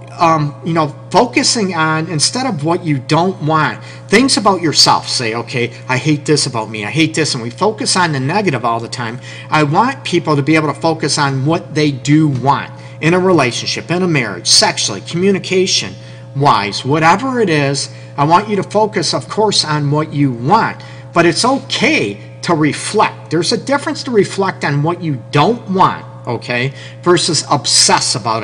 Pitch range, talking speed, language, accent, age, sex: 130-180 Hz, 185 wpm, English, American, 50-69, male